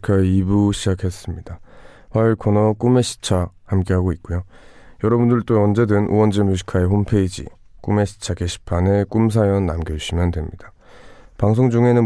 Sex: male